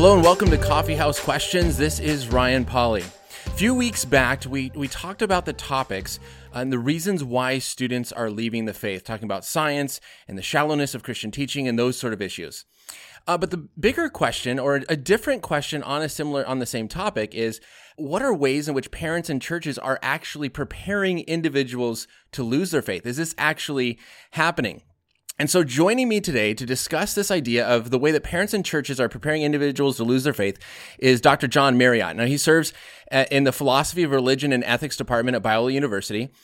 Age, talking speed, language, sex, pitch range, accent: 30-49, 200 wpm, English, male, 120-150 Hz, American